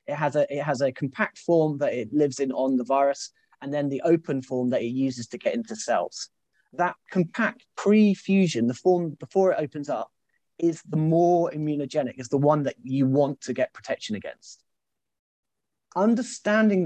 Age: 30-49